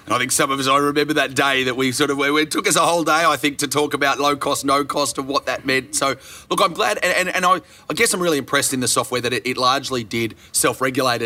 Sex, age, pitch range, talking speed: male, 30-49, 115-140 Hz, 290 wpm